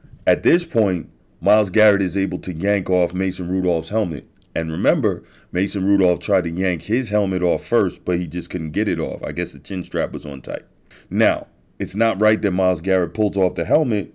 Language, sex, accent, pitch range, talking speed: English, male, American, 95-130 Hz, 210 wpm